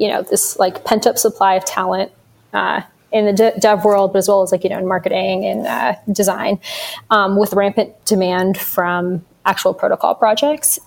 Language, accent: English, American